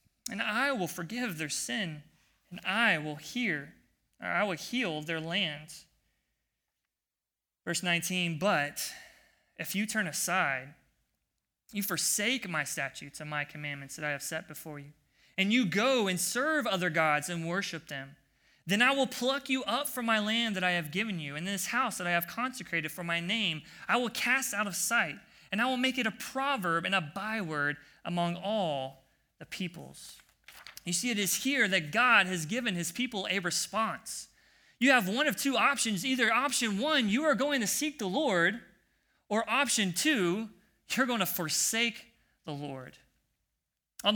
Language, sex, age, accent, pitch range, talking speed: English, male, 20-39, American, 160-235 Hz, 175 wpm